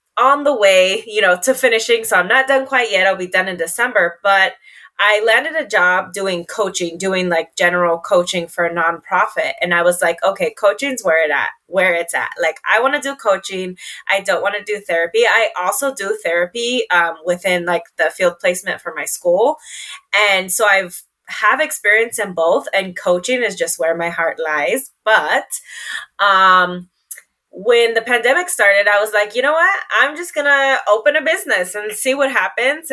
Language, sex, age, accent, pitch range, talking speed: English, female, 20-39, American, 175-250 Hz, 195 wpm